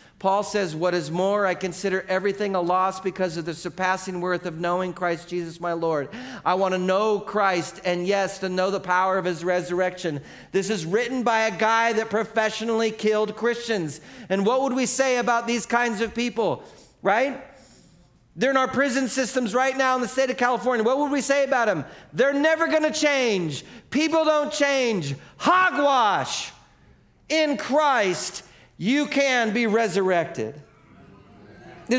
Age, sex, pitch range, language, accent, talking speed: 40-59, male, 145-225 Hz, English, American, 170 wpm